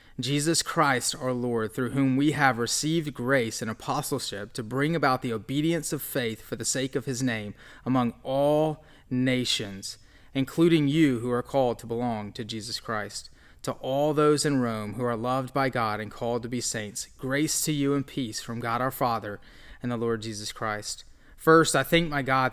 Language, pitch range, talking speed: English, 115-145 Hz, 190 wpm